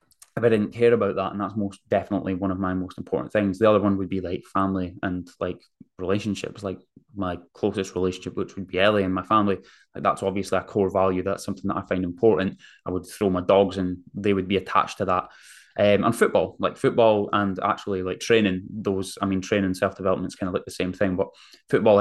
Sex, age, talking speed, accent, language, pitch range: male, 10-29, 230 wpm, British, English, 95-110 Hz